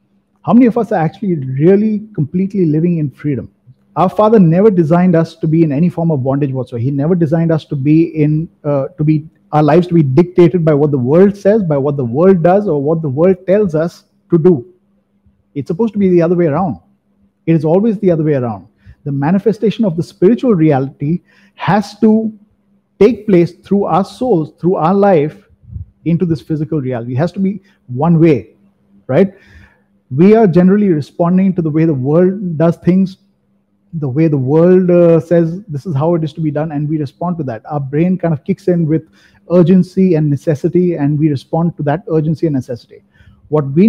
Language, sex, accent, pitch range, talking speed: English, male, Indian, 150-185 Hz, 205 wpm